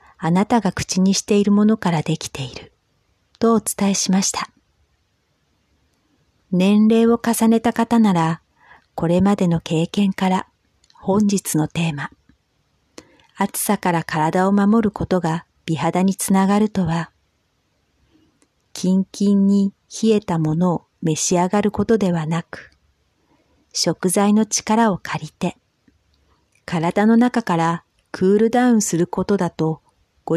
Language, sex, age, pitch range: Japanese, female, 50-69, 165-205 Hz